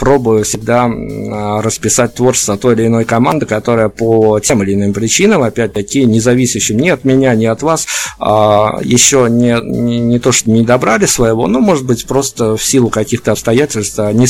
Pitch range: 110-135 Hz